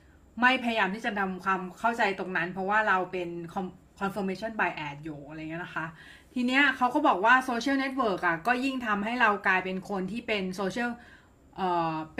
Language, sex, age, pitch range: Thai, female, 30-49, 185-235 Hz